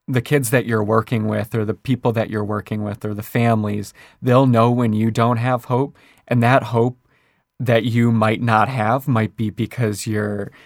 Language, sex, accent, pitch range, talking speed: English, male, American, 115-135 Hz, 195 wpm